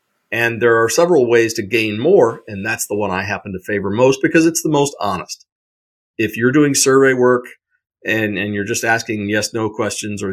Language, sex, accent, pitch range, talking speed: English, male, American, 95-125 Hz, 205 wpm